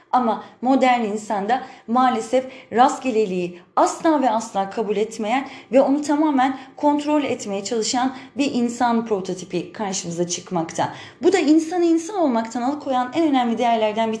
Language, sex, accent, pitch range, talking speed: Turkish, female, native, 220-280 Hz, 130 wpm